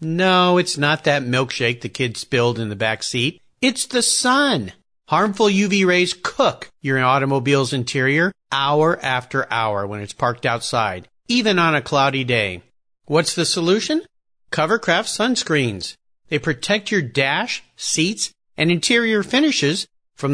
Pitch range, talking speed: 130-210 Hz, 140 wpm